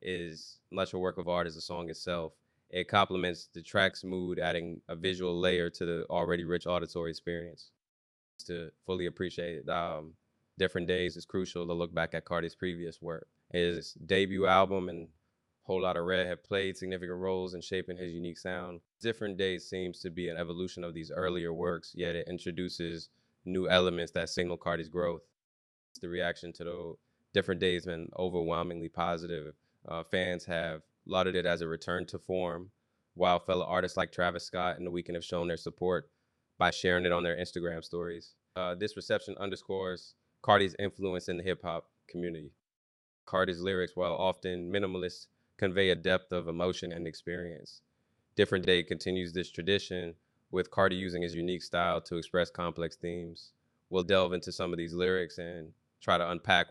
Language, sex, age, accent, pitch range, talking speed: English, male, 20-39, American, 85-95 Hz, 170 wpm